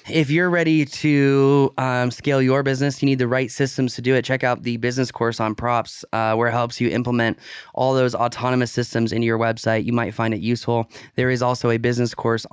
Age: 20-39